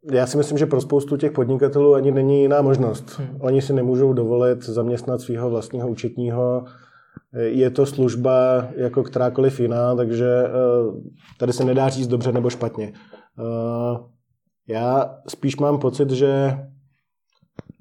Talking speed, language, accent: 130 wpm, Czech, native